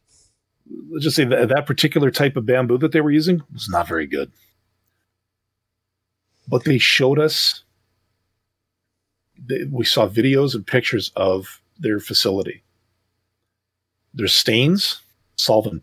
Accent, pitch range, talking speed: American, 100-130 Hz, 125 wpm